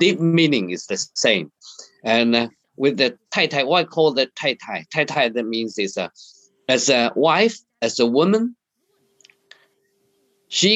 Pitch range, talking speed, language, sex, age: 120-175 Hz, 160 wpm, English, male, 50-69